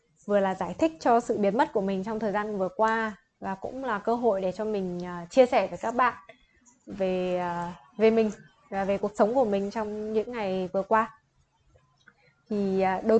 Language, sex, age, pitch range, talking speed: Vietnamese, female, 20-39, 185-230 Hz, 200 wpm